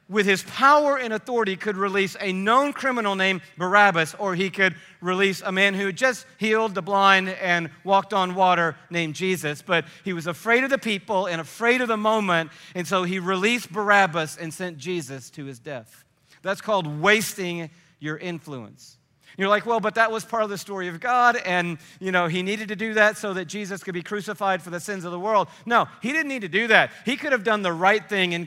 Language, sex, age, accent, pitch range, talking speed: English, male, 40-59, American, 165-205 Hz, 220 wpm